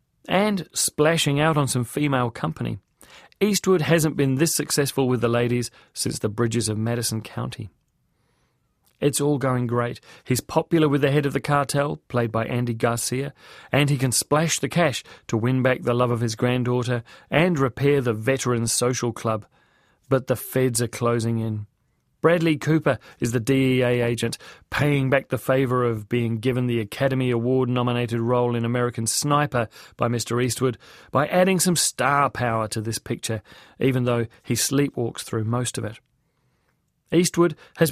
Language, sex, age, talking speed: English, male, 40-59, 165 wpm